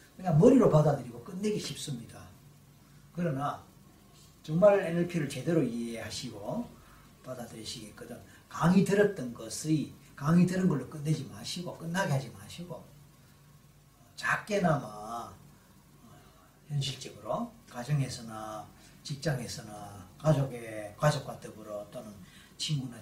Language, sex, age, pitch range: Korean, male, 40-59, 125-170 Hz